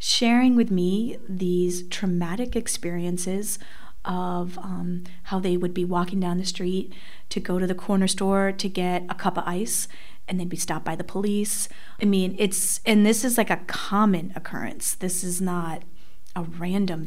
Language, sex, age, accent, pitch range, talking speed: English, female, 30-49, American, 180-205 Hz, 175 wpm